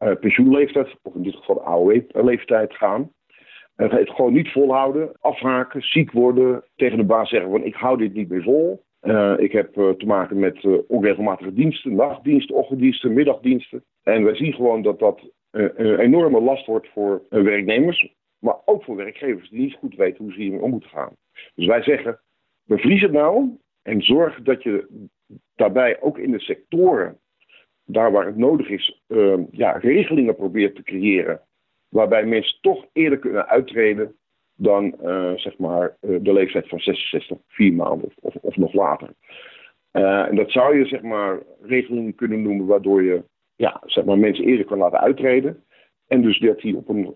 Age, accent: 50-69, Dutch